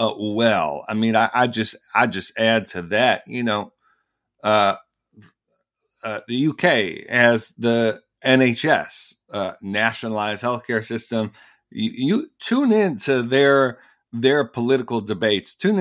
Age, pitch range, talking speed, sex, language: 40-59, 115-135 Hz, 130 wpm, male, English